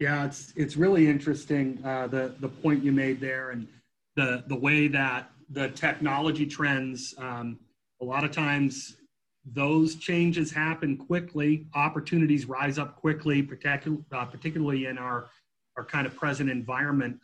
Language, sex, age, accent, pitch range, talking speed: English, male, 30-49, American, 130-155 Hz, 150 wpm